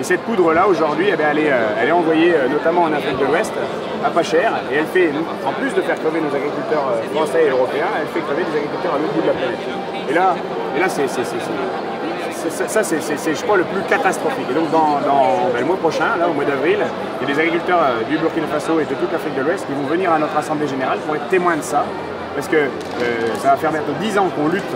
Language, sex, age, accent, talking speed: French, male, 30-49, French, 250 wpm